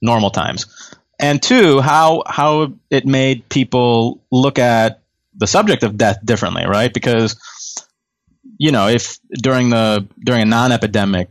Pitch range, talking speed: 100-120 Hz, 140 wpm